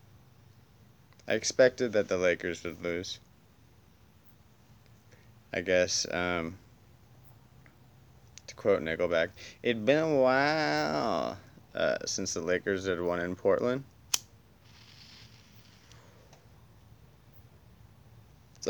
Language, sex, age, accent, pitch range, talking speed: English, male, 20-39, American, 95-120 Hz, 85 wpm